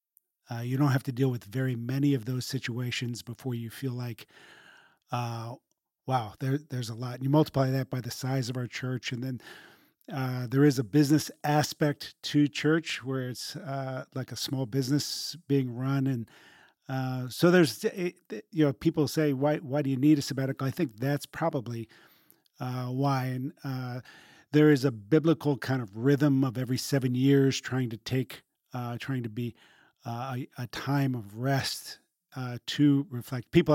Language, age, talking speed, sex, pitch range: English, 40-59, 180 wpm, male, 125-145 Hz